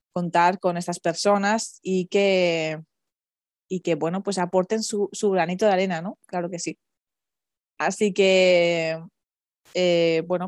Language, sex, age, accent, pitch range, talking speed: Spanish, female, 20-39, Spanish, 175-210 Hz, 130 wpm